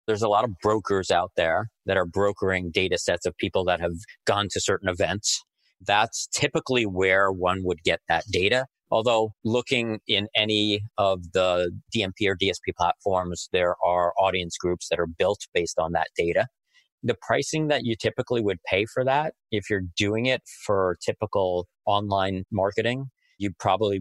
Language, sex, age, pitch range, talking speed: English, male, 40-59, 90-110 Hz, 170 wpm